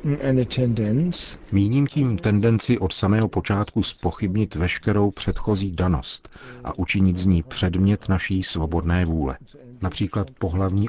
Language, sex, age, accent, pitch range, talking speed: Czech, male, 50-69, native, 85-100 Hz, 110 wpm